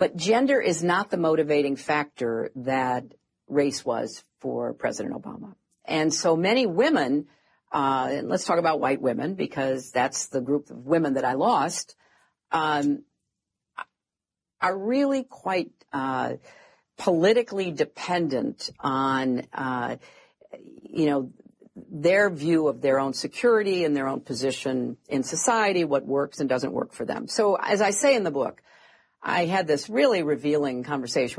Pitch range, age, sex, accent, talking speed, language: 140-200 Hz, 50-69, female, American, 145 wpm, English